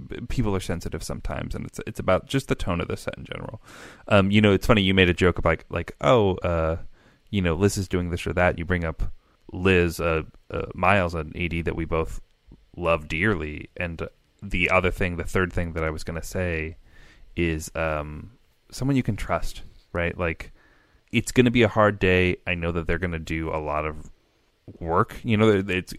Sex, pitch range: male, 85-100 Hz